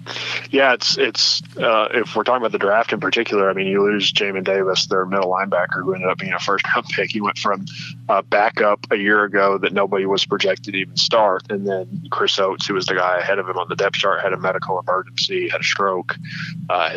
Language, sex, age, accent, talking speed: English, male, 20-39, American, 240 wpm